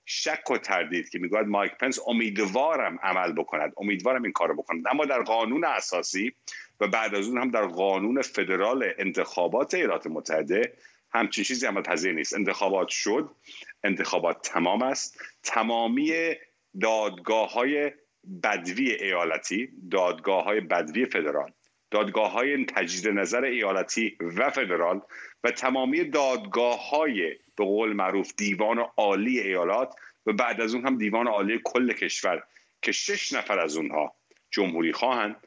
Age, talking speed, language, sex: 50-69, 135 wpm, Persian, male